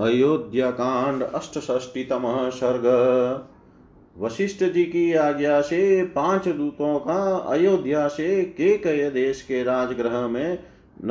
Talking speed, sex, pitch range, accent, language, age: 90 wpm, male, 130-145 Hz, native, Hindi, 40-59